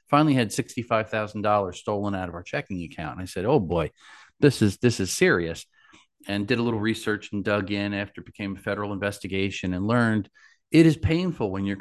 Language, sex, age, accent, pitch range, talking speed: English, male, 40-59, American, 100-120 Hz, 205 wpm